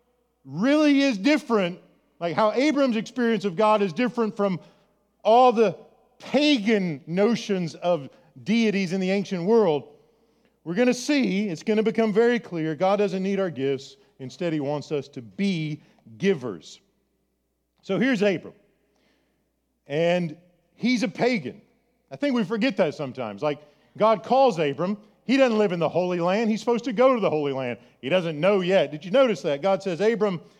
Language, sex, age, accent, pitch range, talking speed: English, male, 40-59, American, 170-230 Hz, 170 wpm